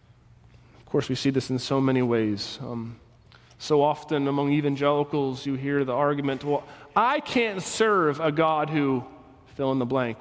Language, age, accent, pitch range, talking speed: English, 30-49, American, 135-195 Hz, 170 wpm